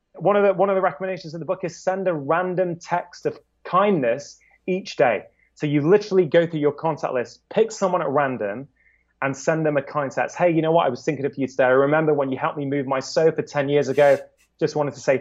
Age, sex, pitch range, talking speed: 30-49, male, 135-180 Hz, 250 wpm